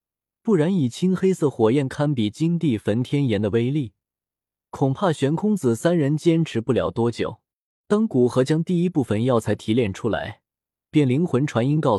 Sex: male